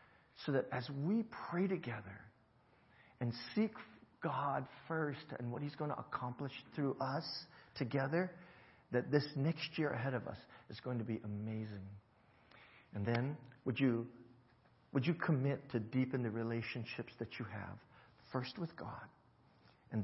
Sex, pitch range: male, 115-155 Hz